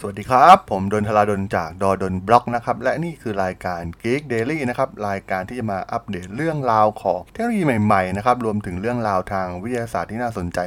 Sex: male